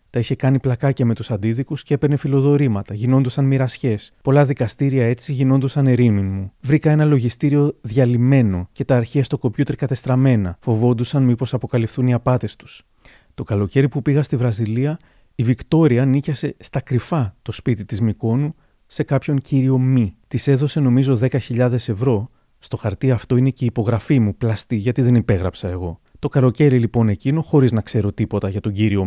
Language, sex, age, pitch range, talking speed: Greek, male, 30-49, 110-140 Hz, 165 wpm